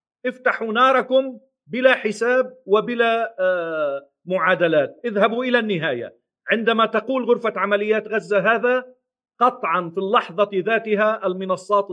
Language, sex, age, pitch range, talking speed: Arabic, male, 50-69, 195-235 Hz, 100 wpm